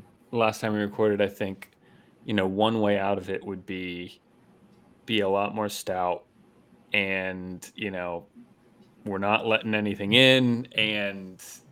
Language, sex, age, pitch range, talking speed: English, male, 20-39, 100-115 Hz, 150 wpm